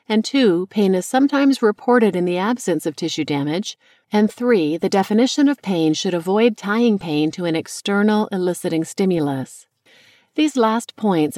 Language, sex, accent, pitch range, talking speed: English, female, American, 160-220 Hz, 160 wpm